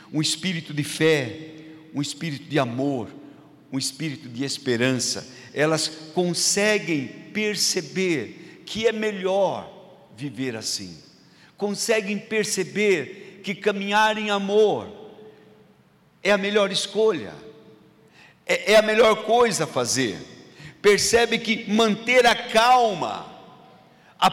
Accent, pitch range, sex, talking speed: Brazilian, 130-215 Hz, male, 105 wpm